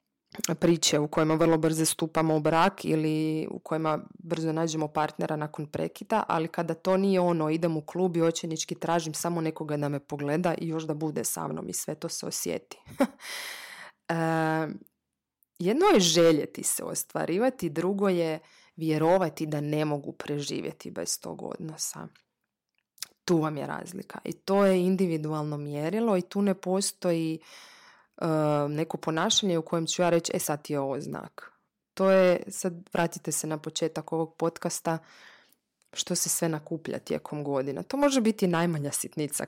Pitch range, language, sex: 155-180 Hz, Croatian, female